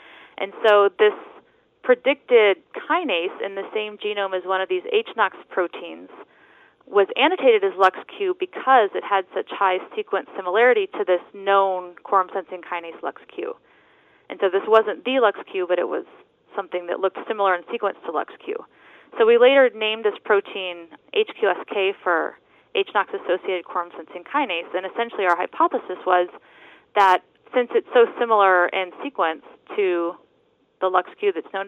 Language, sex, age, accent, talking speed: English, female, 30-49, American, 145 wpm